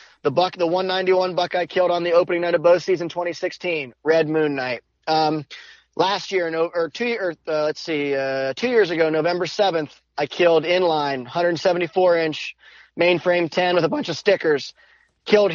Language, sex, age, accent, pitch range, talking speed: English, male, 30-49, American, 160-195 Hz, 180 wpm